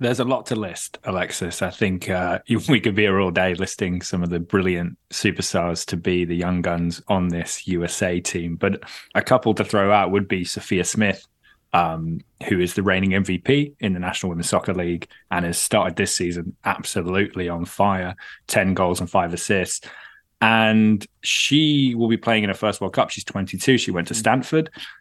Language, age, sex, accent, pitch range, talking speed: English, 20-39, male, British, 90-110 Hz, 195 wpm